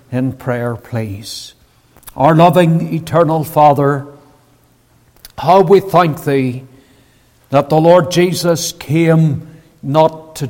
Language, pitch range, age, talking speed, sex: English, 135-185 Hz, 60-79, 105 wpm, male